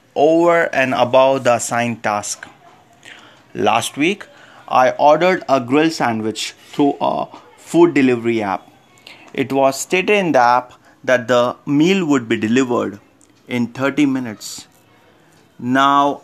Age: 30-49